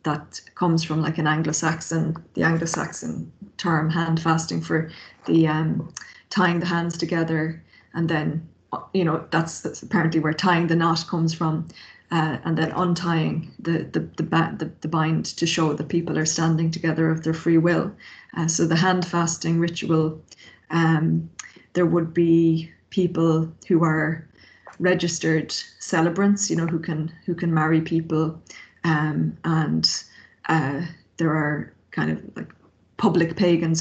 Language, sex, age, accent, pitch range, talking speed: English, female, 20-39, Irish, 160-170 Hz, 145 wpm